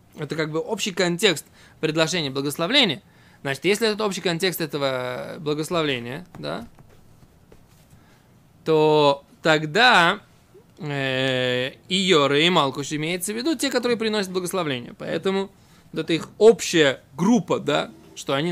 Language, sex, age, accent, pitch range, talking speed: Russian, male, 20-39, native, 150-210 Hz, 115 wpm